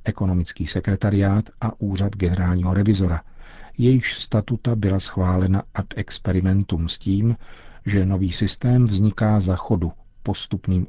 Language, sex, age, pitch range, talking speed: Czech, male, 50-69, 95-115 Hz, 115 wpm